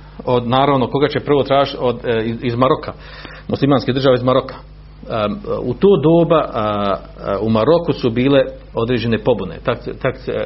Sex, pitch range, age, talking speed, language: male, 105-135 Hz, 50-69, 130 wpm, Croatian